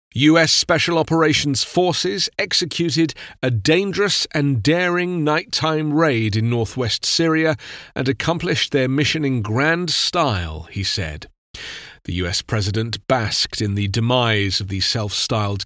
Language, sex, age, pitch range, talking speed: English, male, 40-59, 110-155 Hz, 125 wpm